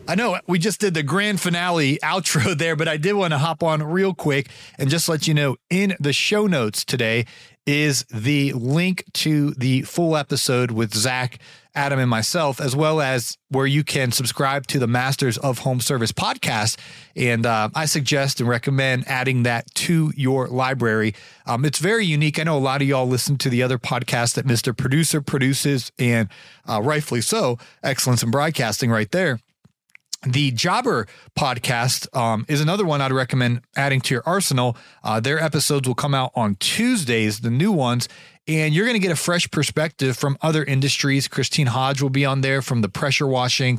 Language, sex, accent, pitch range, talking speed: English, male, American, 125-155 Hz, 190 wpm